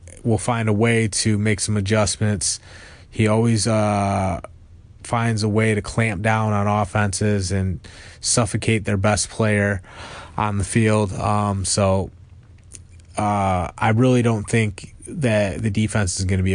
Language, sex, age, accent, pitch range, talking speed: English, male, 20-39, American, 95-110 Hz, 145 wpm